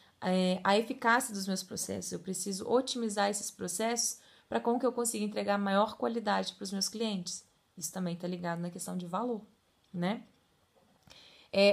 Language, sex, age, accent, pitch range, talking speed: Portuguese, female, 20-39, Brazilian, 185-230 Hz, 160 wpm